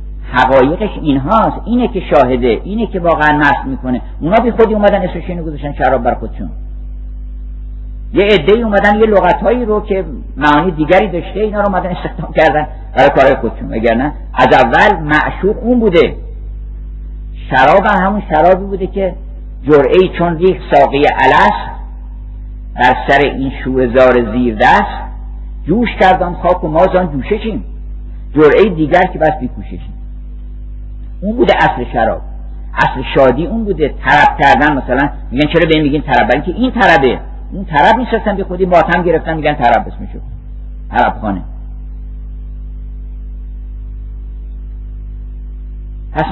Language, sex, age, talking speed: Persian, male, 50-69, 135 wpm